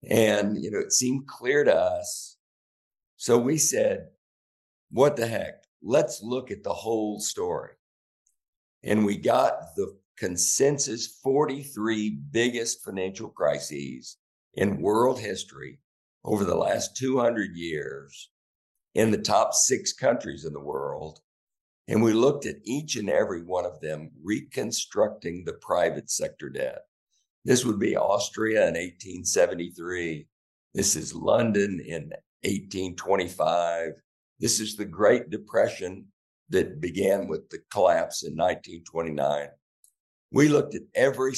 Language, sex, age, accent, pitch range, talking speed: English, male, 60-79, American, 85-135 Hz, 125 wpm